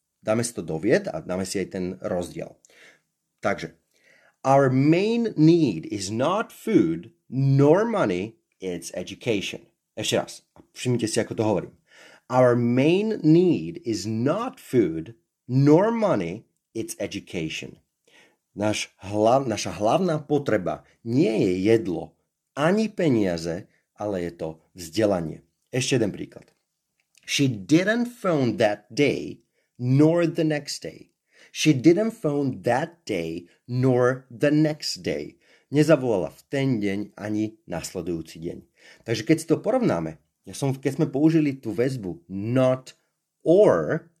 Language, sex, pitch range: Slovak, male, 105-150 Hz